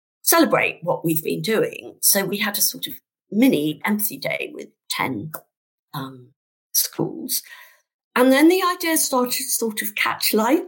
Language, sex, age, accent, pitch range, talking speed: English, female, 50-69, British, 170-270 Hz, 155 wpm